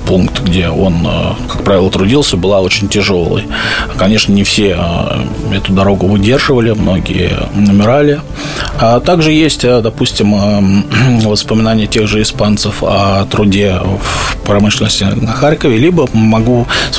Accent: native